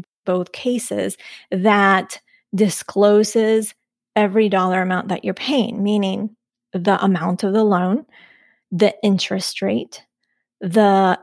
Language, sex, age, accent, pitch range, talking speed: English, female, 30-49, American, 185-220 Hz, 105 wpm